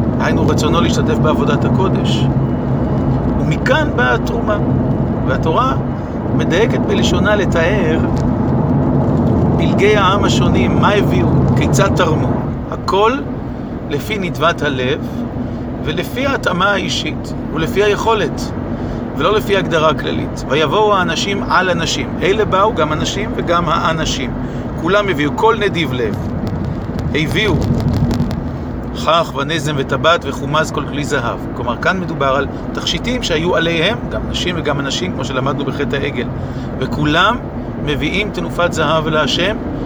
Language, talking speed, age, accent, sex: Hebrew, 115 wpm, 50-69, native, male